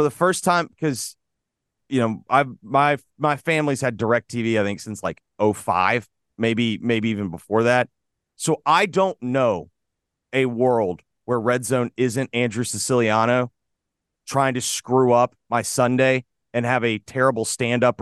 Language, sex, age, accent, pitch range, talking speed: English, male, 30-49, American, 120-180 Hz, 160 wpm